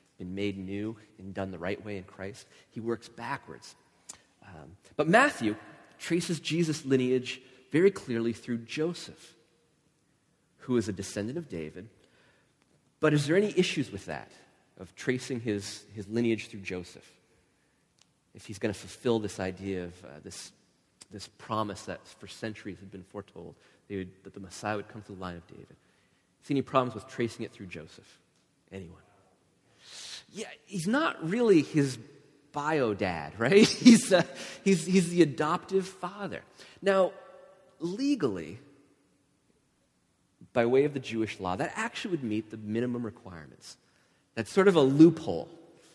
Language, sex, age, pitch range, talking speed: English, male, 30-49, 100-145 Hz, 155 wpm